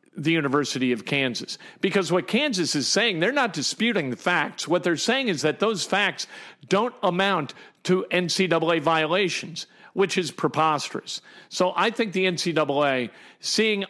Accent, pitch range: American, 155-190 Hz